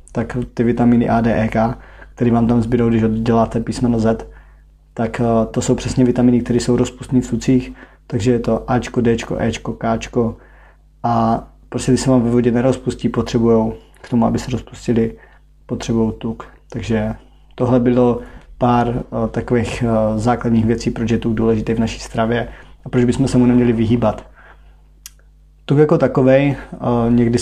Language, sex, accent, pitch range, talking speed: Czech, male, native, 115-125 Hz, 155 wpm